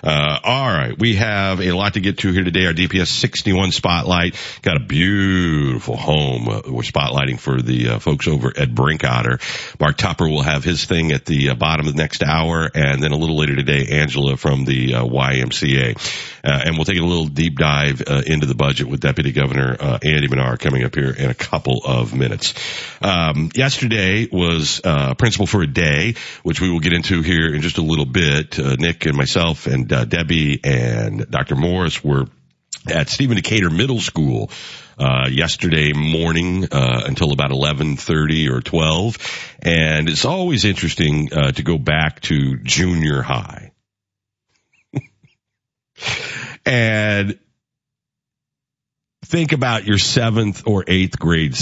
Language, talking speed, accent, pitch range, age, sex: English, 170 wpm, American, 70-100 Hz, 50-69, male